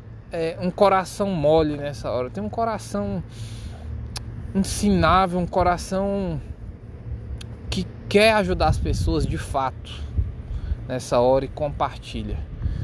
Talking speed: 105 wpm